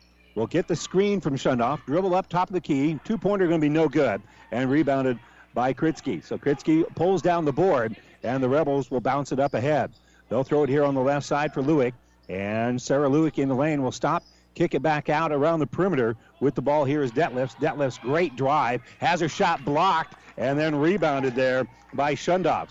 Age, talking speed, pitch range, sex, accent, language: 50-69, 210 wpm, 135-165 Hz, male, American, English